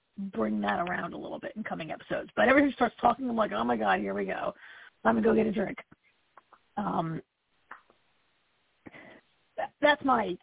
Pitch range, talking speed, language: 225-295 Hz, 185 wpm, English